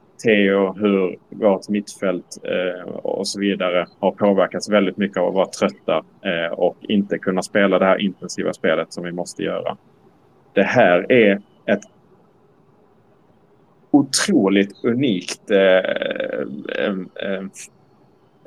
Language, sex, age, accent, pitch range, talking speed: Swedish, male, 30-49, Norwegian, 95-105 Hz, 115 wpm